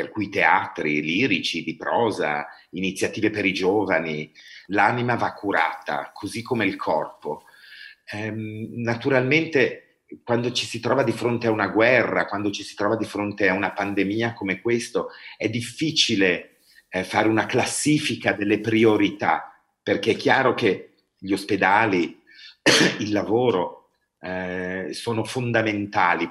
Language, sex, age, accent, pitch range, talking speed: Italian, male, 40-59, native, 100-135 Hz, 125 wpm